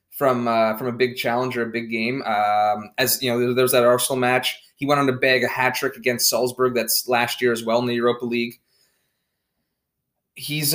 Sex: male